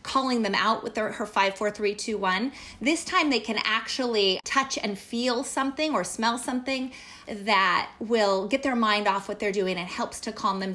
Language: English